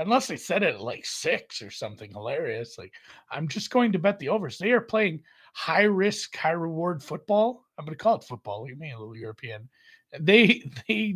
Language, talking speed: English, 205 wpm